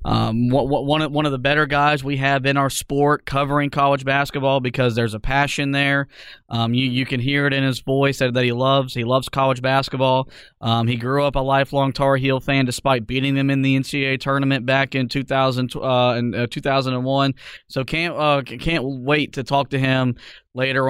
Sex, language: male, English